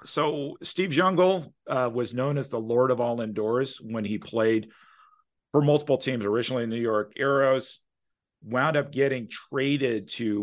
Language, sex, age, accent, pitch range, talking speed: English, male, 40-59, American, 95-115 Hz, 160 wpm